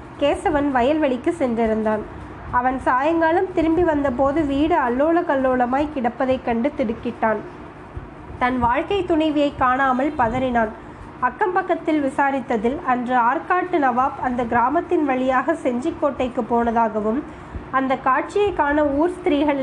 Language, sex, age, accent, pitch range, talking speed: Tamil, female, 20-39, native, 245-305 Hz, 100 wpm